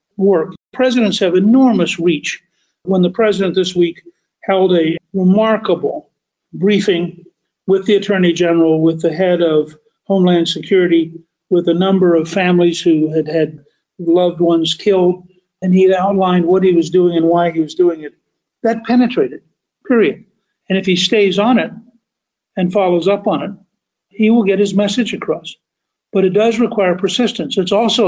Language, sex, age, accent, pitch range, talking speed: English, male, 50-69, American, 170-200 Hz, 160 wpm